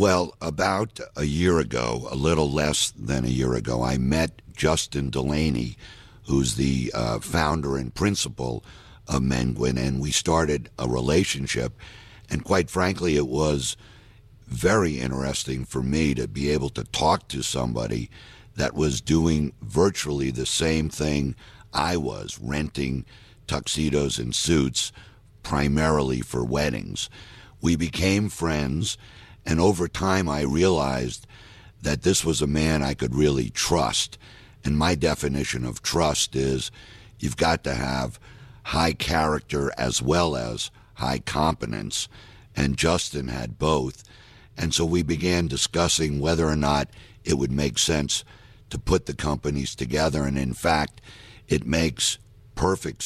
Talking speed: 140 wpm